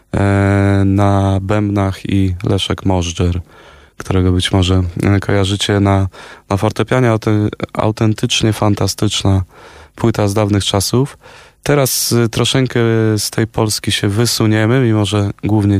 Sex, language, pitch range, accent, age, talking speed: male, Polish, 95-110 Hz, native, 20-39, 105 wpm